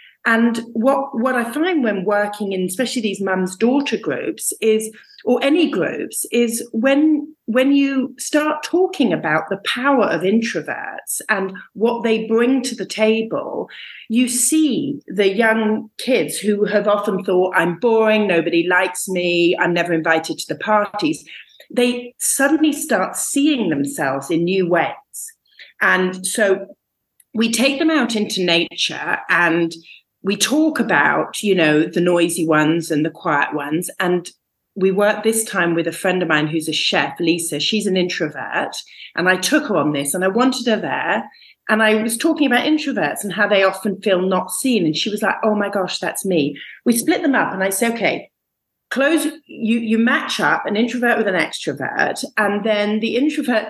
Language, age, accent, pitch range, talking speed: English, 40-59, British, 185-245 Hz, 175 wpm